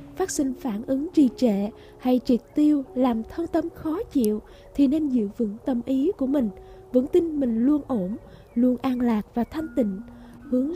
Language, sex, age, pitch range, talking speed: Vietnamese, female, 20-39, 230-290 Hz, 190 wpm